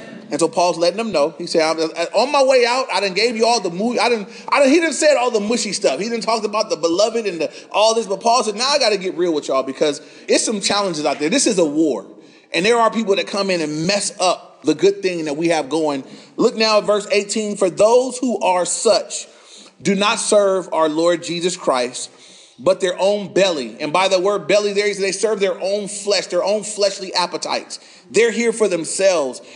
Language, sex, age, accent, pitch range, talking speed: English, male, 30-49, American, 175-230 Hz, 230 wpm